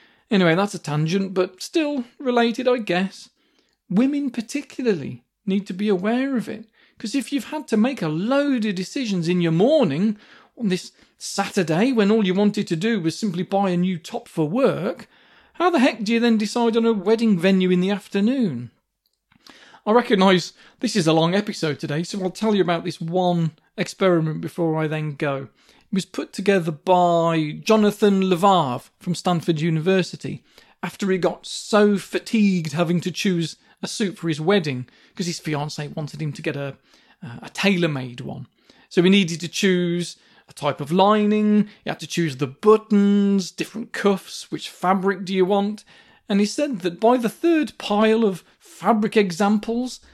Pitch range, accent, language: 175-230 Hz, British, English